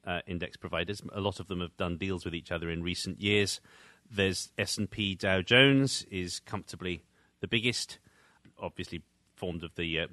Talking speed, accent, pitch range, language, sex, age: 170 wpm, British, 90-110 Hz, English, male, 30-49